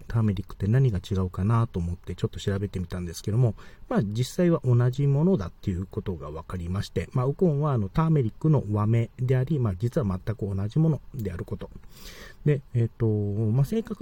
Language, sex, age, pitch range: Japanese, male, 40-59, 95-145 Hz